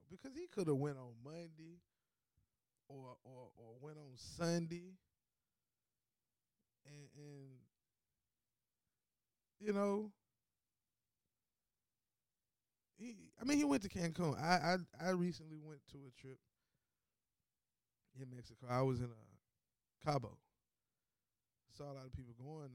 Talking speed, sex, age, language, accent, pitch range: 120 wpm, male, 20-39, English, American, 120-155 Hz